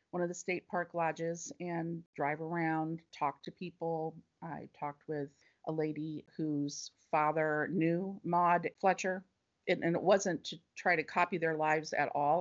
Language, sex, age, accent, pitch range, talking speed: English, female, 40-59, American, 155-180 Hz, 165 wpm